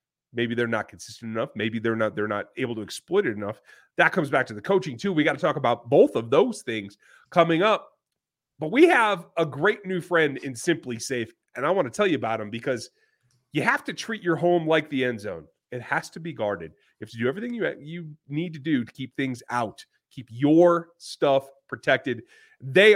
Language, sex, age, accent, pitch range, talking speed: English, male, 30-49, American, 115-170 Hz, 225 wpm